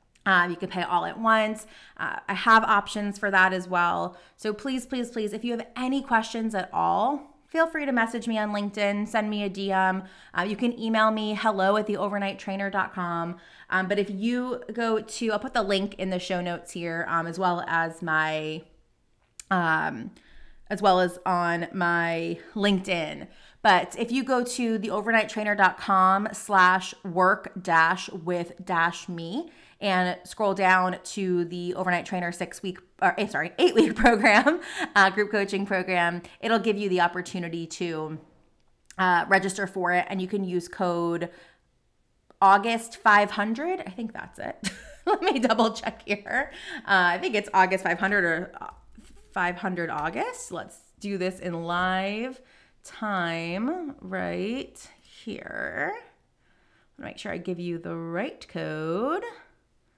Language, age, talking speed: English, 20-39, 150 wpm